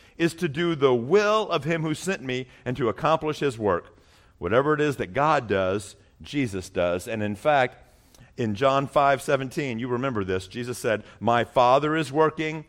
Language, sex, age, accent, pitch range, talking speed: English, male, 50-69, American, 120-175 Hz, 185 wpm